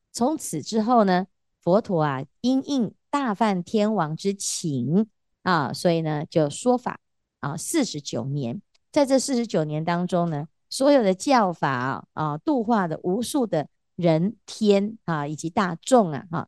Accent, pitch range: American, 160-235 Hz